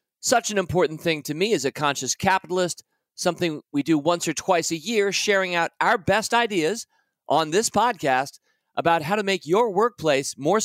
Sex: male